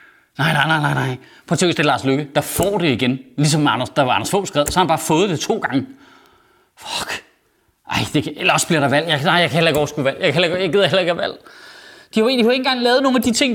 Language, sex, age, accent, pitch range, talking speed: Danish, male, 30-49, native, 180-250 Hz, 285 wpm